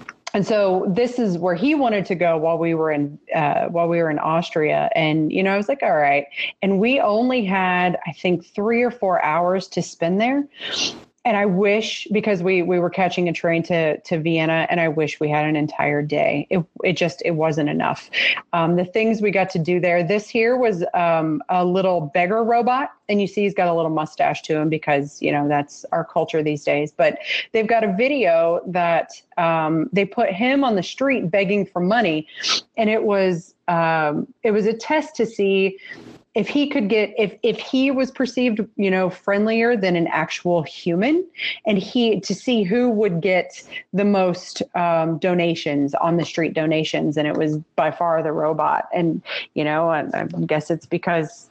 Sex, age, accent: female, 30-49, American